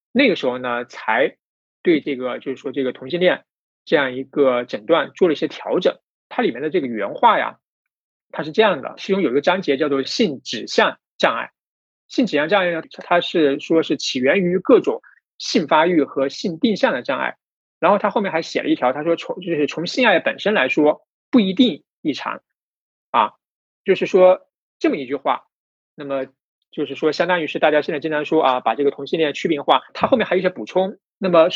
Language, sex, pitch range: Chinese, male, 145-190 Hz